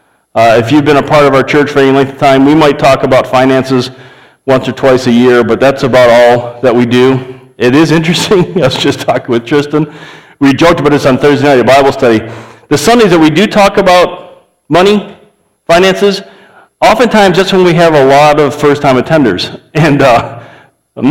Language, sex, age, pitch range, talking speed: English, male, 40-59, 130-170 Hz, 210 wpm